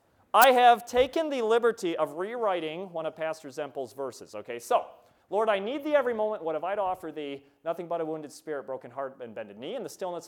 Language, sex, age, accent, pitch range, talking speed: English, male, 30-49, American, 165-245 Hz, 230 wpm